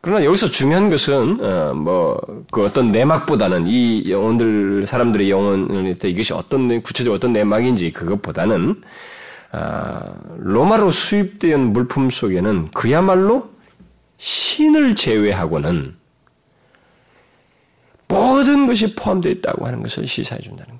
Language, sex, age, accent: Korean, male, 40-59, native